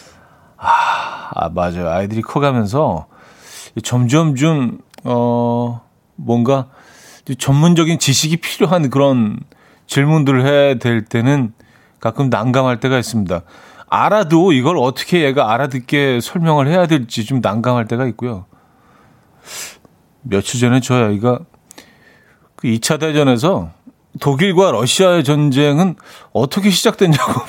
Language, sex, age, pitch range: Korean, male, 40-59, 125-170 Hz